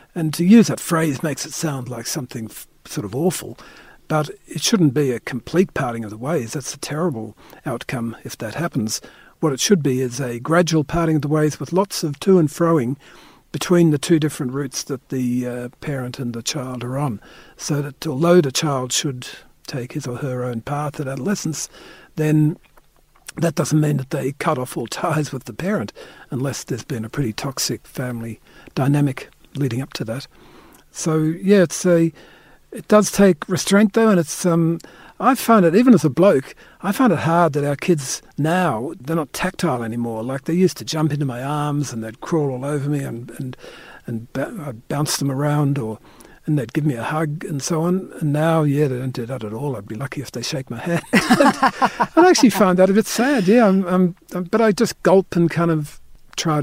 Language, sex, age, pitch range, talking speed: English, male, 50-69, 135-175 Hz, 210 wpm